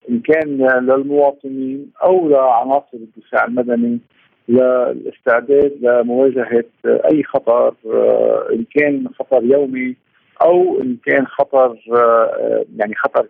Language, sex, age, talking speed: Arabic, male, 50-69, 95 wpm